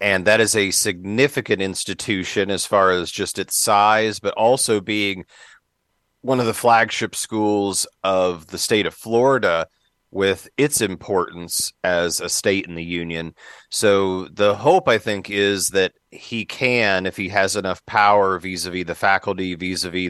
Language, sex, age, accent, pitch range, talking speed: English, male, 40-59, American, 90-110 Hz, 155 wpm